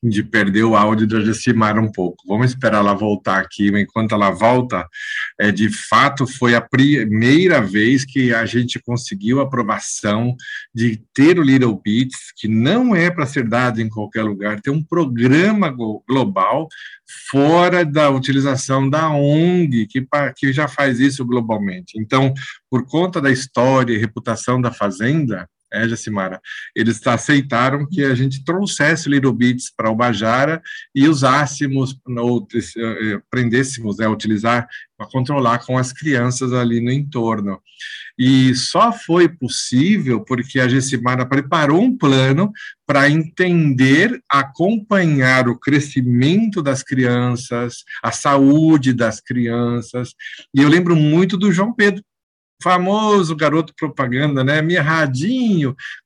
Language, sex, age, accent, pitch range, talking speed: Portuguese, male, 50-69, Brazilian, 115-145 Hz, 135 wpm